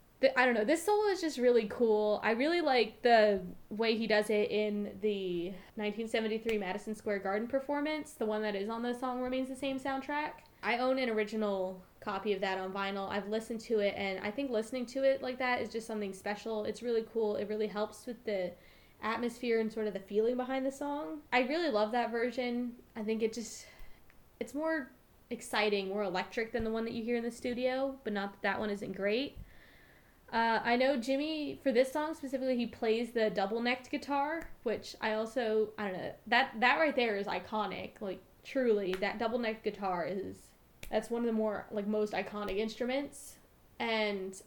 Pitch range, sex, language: 210-255 Hz, female, English